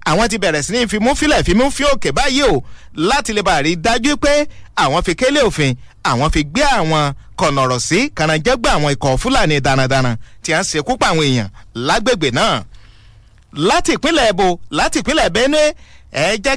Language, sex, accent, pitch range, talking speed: English, male, Nigerian, 155-250 Hz, 165 wpm